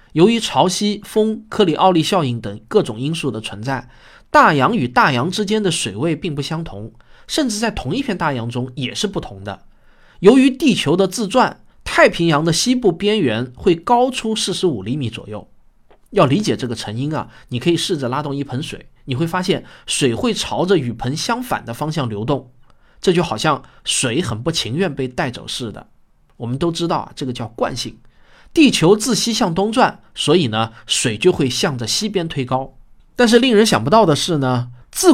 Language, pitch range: Chinese, 125-195 Hz